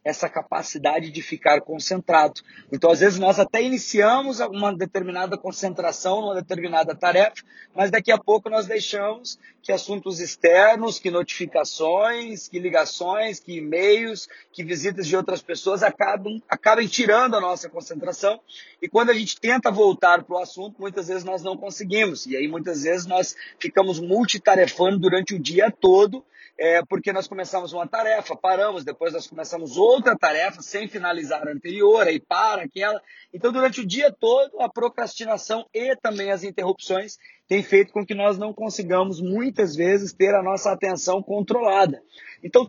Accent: Brazilian